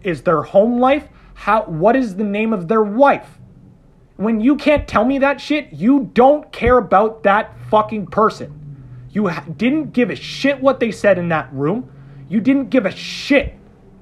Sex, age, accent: male, 30-49, American